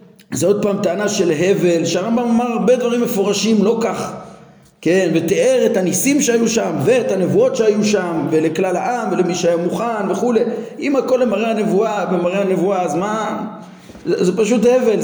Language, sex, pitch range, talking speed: Hebrew, male, 170-220 Hz, 165 wpm